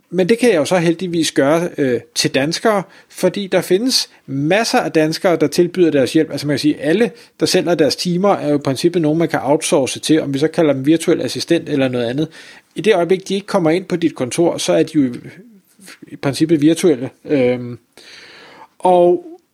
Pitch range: 150-195 Hz